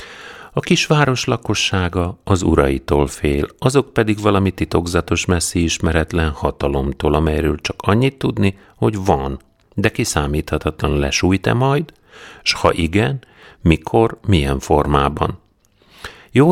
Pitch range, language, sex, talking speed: 75-105 Hz, Hungarian, male, 115 wpm